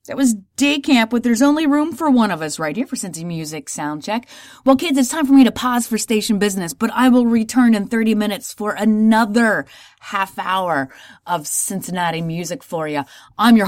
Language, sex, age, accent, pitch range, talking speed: English, female, 30-49, American, 185-265 Hz, 205 wpm